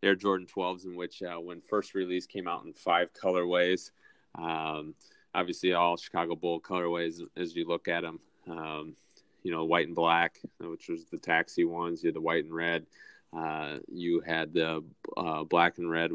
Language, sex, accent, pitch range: English, male, American, 85-95 Hz